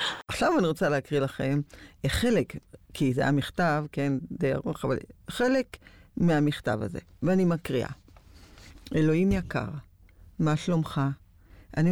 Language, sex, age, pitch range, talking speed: Hebrew, female, 50-69, 125-165 Hz, 105 wpm